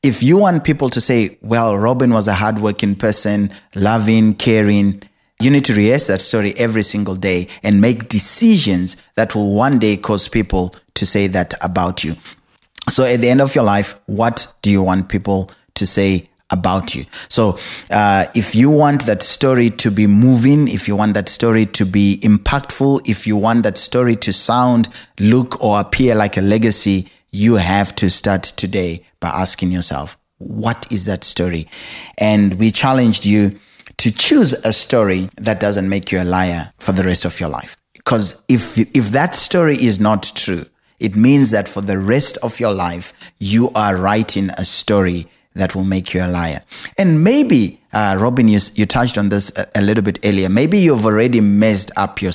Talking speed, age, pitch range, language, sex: 190 wpm, 20-39, 95-115 Hz, English, male